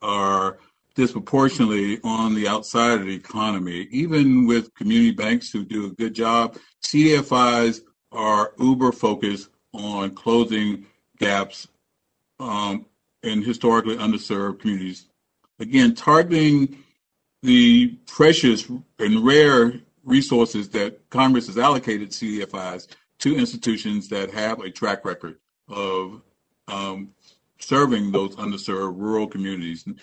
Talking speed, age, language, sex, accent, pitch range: 110 wpm, 50-69, English, male, American, 100-125 Hz